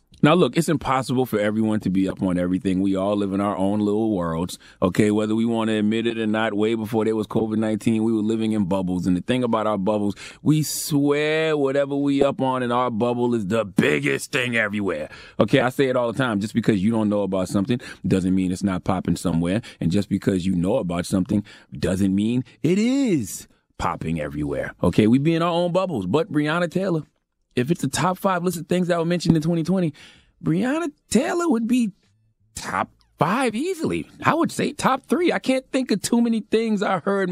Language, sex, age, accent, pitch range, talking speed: English, male, 30-49, American, 105-175 Hz, 215 wpm